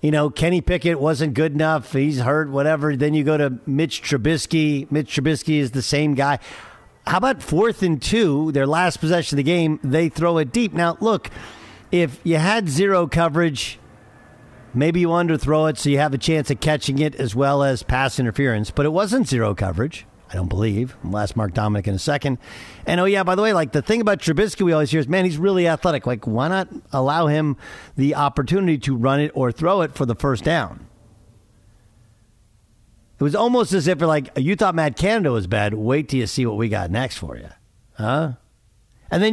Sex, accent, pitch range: male, American, 125-170 Hz